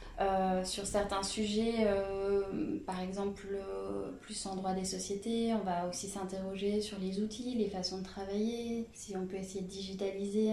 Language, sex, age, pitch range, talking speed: French, female, 20-39, 190-210 Hz, 170 wpm